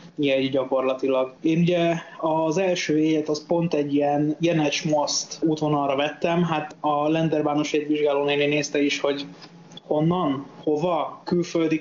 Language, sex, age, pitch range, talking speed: Hungarian, male, 20-39, 145-165 Hz, 135 wpm